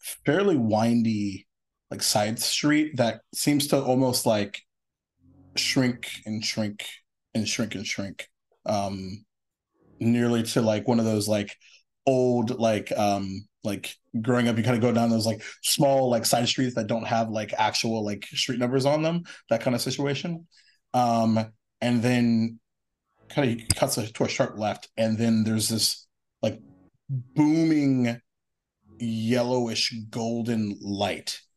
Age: 30-49